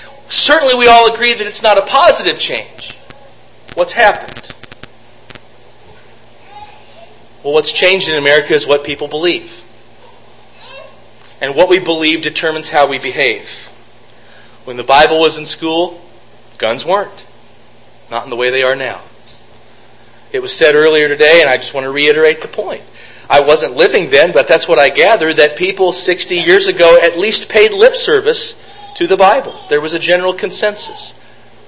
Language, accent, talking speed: English, American, 160 wpm